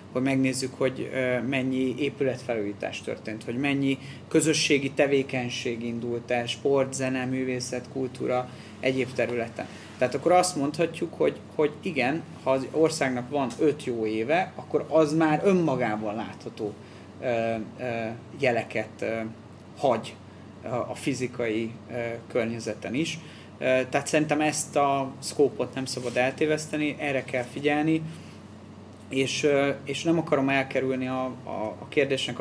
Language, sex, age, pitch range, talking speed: Hungarian, male, 30-49, 115-135 Hz, 115 wpm